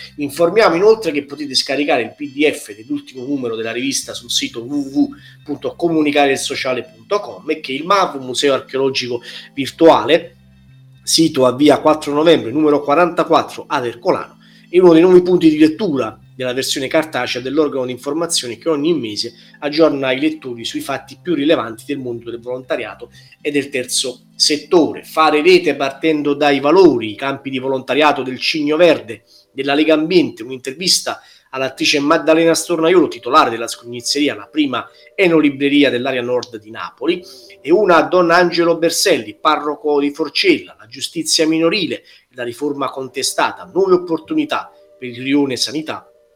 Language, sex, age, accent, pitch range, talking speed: Italian, male, 30-49, native, 130-165 Hz, 145 wpm